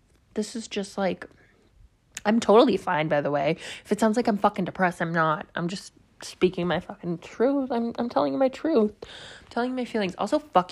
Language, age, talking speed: English, 20-39, 215 wpm